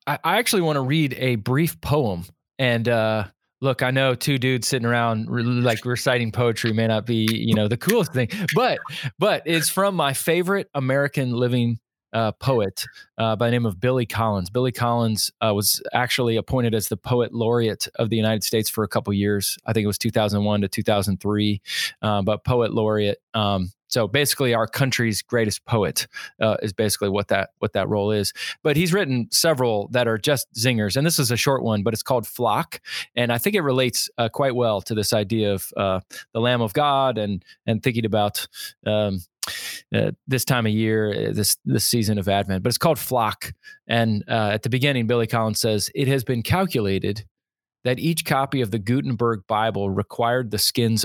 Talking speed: 195 wpm